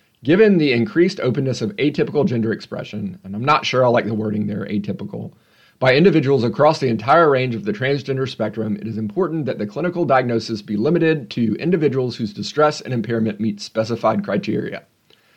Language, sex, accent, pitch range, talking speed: English, male, American, 110-140 Hz, 180 wpm